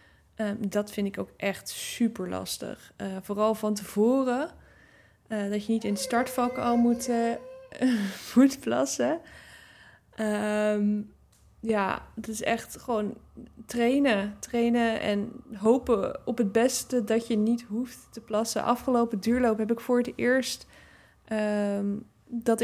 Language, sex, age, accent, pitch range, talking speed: Dutch, female, 20-39, Dutch, 205-240 Hz, 125 wpm